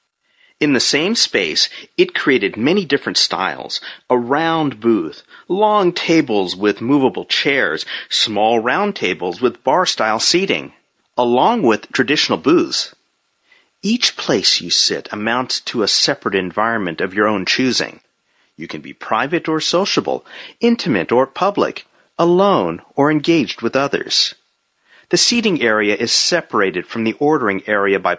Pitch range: 110-175 Hz